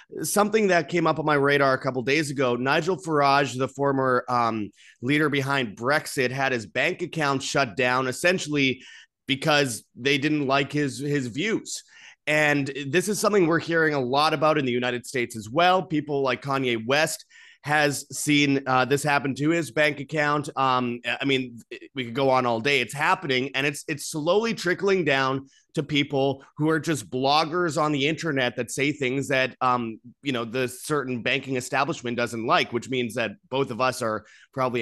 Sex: male